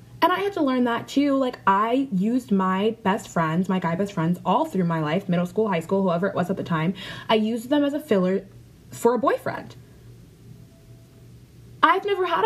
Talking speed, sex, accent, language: 205 wpm, female, American, English